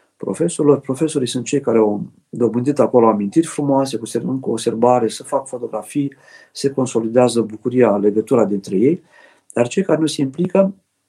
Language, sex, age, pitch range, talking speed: Romanian, male, 50-69, 115-150 Hz, 145 wpm